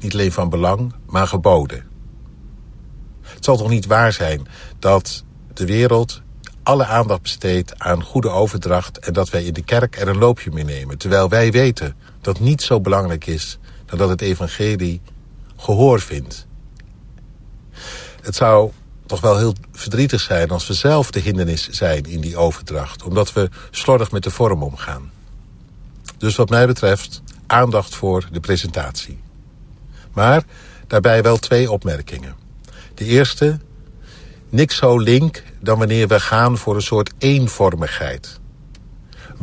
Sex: male